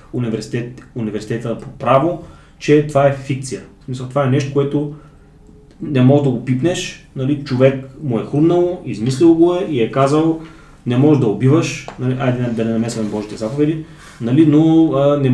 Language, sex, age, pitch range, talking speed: Bulgarian, male, 20-39, 120-145 Hz, 175 wpm